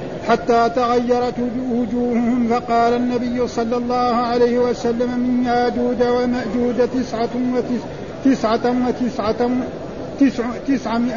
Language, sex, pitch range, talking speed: Arabic, male, 240-250 Hz, 80 wpm